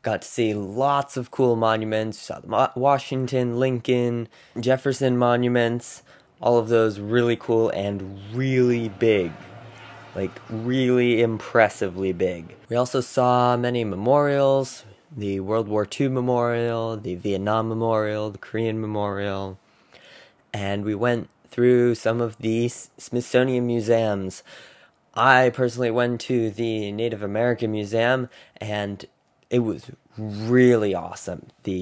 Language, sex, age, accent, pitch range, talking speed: English, male, 20-39, American, 105-125 Hz, 125 wpm